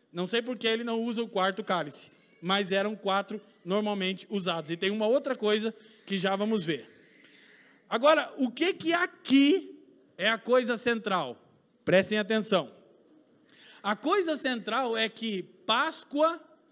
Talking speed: 145 wpm